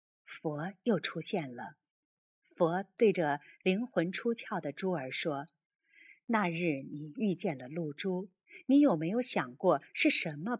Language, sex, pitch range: Chinese, female, 160-235 Hz